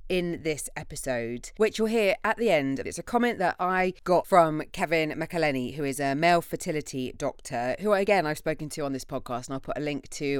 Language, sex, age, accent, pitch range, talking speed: English, female, 20-39, British, 135-175 Hz, 220 wpm